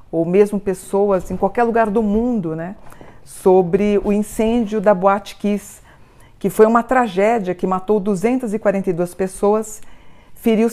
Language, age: Portuguese, 50-69